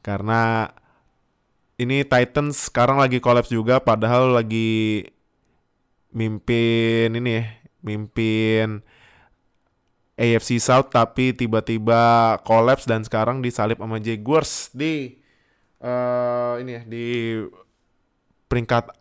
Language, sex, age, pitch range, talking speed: Indonesian, male, 20-39, 115-150 Hz, 90 wpm